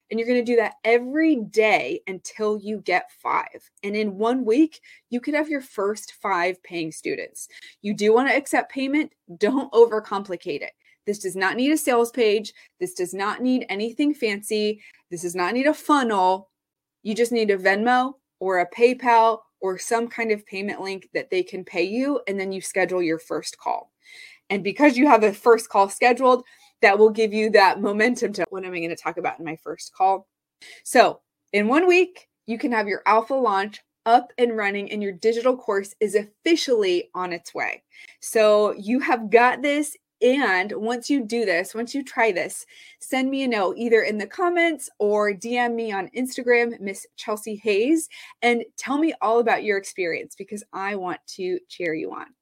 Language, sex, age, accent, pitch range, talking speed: English, female, 20-39, American, 200-260 Hz, 195 wpm